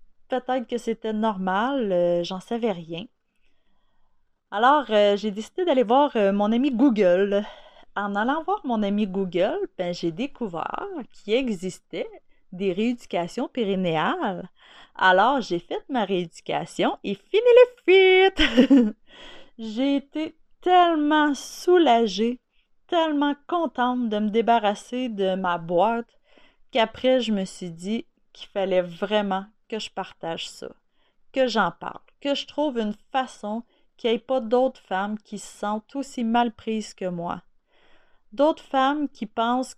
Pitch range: 200-275 Hz